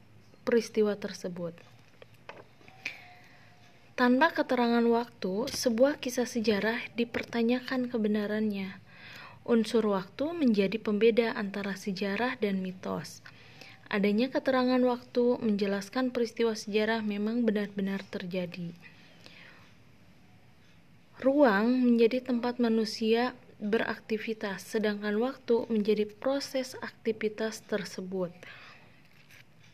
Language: Indonesian